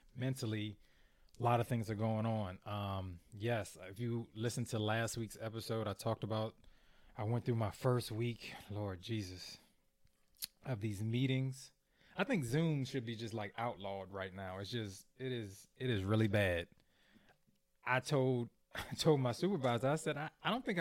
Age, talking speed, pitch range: 20-39, 175 wpm, 105-125 Hz